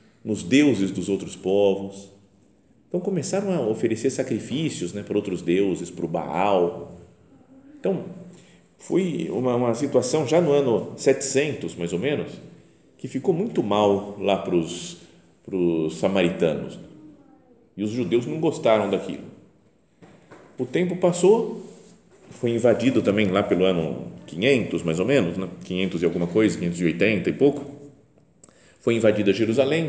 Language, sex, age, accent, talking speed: Portuguese, male, 50-69, Brazilian, 140 wpm